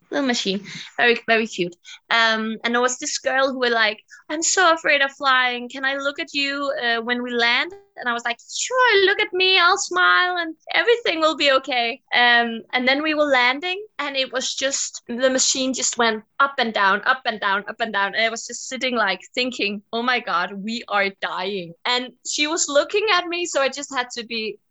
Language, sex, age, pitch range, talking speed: English, female, 20-39, 205-280 Hz, 220 wpm